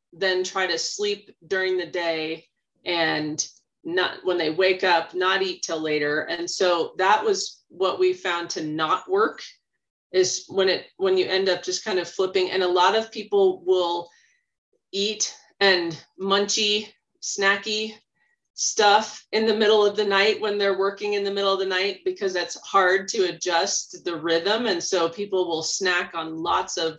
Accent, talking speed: American, 175 wpm